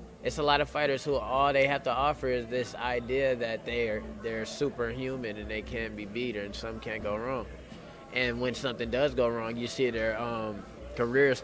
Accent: American